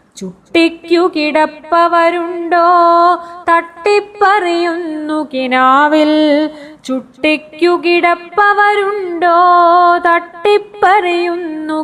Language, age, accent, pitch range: Malayalam, 20-39, native, 260-345 Hz